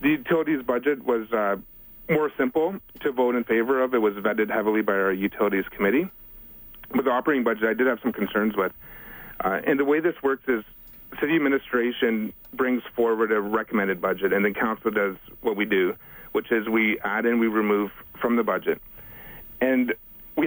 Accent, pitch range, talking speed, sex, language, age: American, 105-135 Hz, 185 wpm, male, English, 40-59